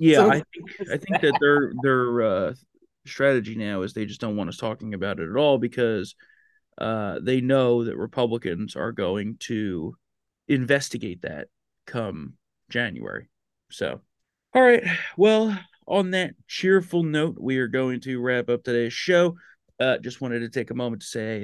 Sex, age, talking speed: male, 30-49, 170 wpm